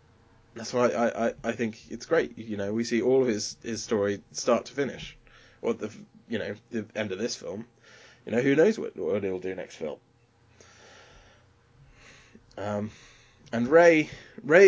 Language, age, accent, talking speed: English, 20-39, British, 180 wpm